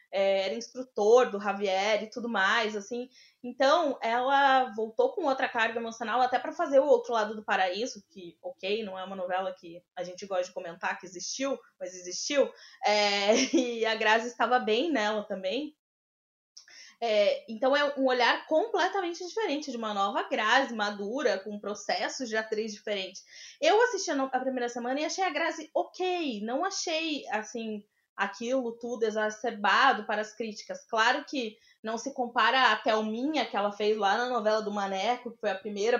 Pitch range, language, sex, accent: 205-260 Hz, Portuguese, female, Brazilian